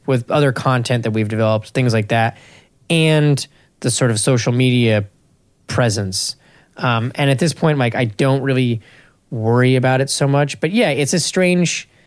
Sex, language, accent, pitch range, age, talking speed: male, English, American, 110-140 Hz, 20-39, 175 wpm